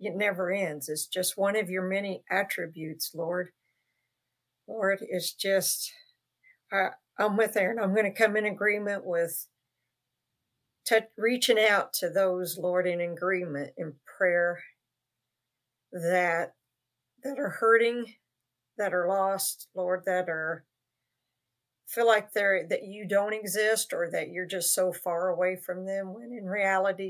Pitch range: 160-200 Hz